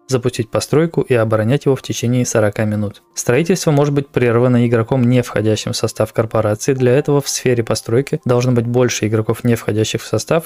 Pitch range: 115-130 Hz